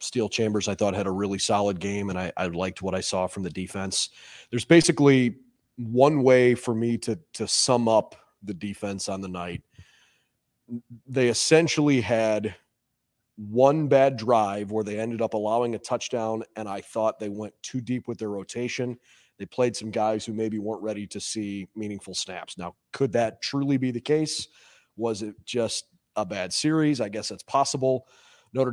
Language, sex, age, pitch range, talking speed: English, male, 30-49, 105-130 Hz, 180 wpm